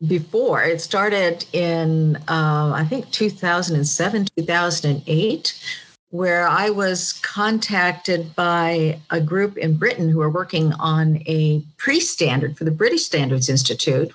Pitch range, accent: 150-175 Hz, American